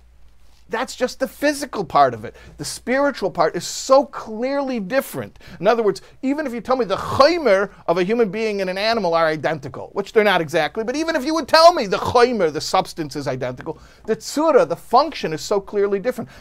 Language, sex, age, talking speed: English, male, 50-69, 210 wpm